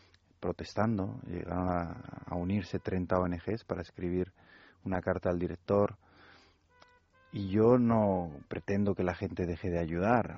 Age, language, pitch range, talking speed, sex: 30-49, Spanish, 90-100 Hz, 135 wpm, male